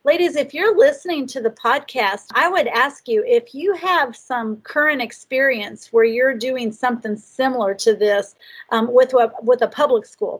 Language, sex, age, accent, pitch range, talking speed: English, female, 40-59, American, 220-255 Hz, 175 wpm